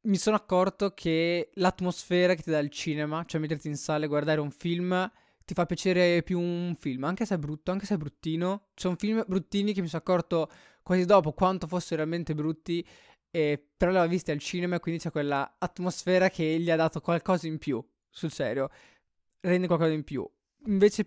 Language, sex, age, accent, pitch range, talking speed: Italian, male, 20-39, native, 155-180 Hz, 200 wpm